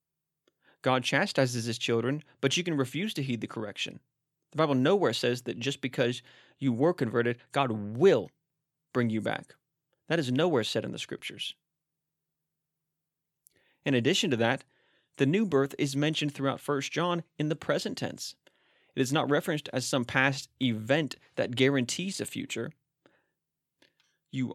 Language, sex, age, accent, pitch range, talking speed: English, male, 30-49, American, 120-150 Hz, 155 wpm